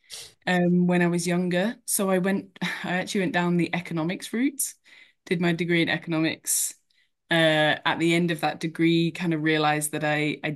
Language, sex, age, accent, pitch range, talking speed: English, female, 20-39, British, 145-175 Hz, 190 wpm